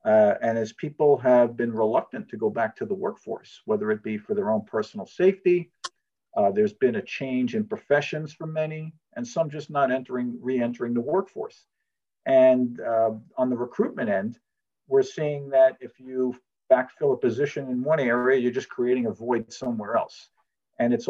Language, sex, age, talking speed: English, male, 50-69, 180 wpm